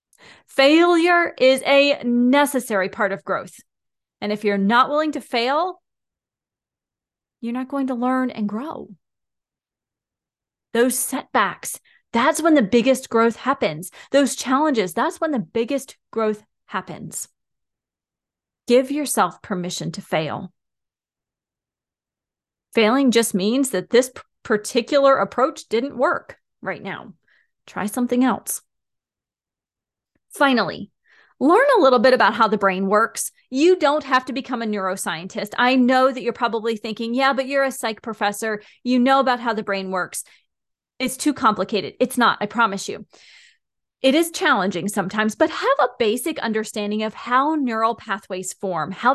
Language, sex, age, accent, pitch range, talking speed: English, female, 30-49, American, 215-270 Hz, 140 wpm